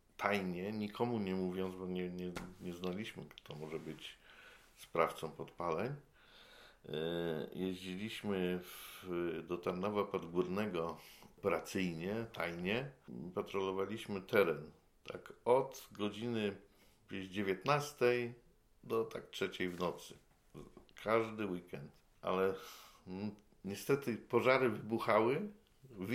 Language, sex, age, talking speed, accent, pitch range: Polish, male, 50-69, 90 wpm, native, 85-105 Hz